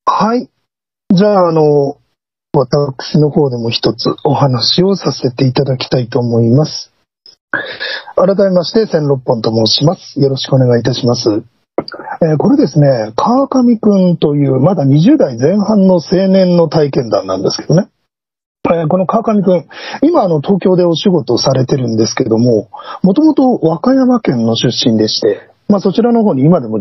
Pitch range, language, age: 130-215 Hz, Japanese, 40-59